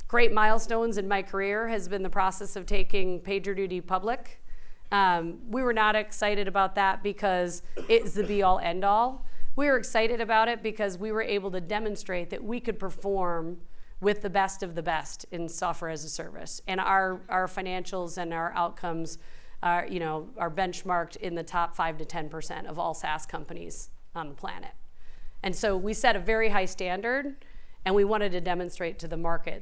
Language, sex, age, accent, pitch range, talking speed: English, female, 40-59, American, 175-205 Hz, 190 wpm